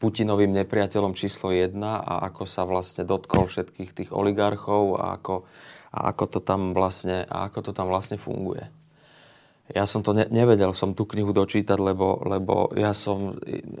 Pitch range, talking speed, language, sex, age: 95-110 Hz, 160 wpm, Slovak, male, 30-49